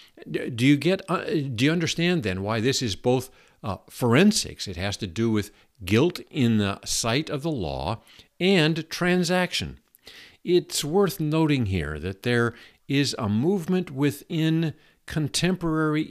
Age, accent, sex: 50-69, American, male